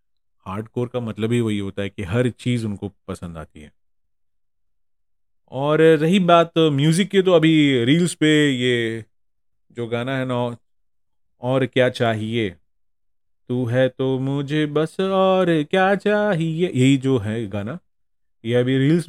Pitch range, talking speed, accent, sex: 110-155 Hz, 145 wpm, native, male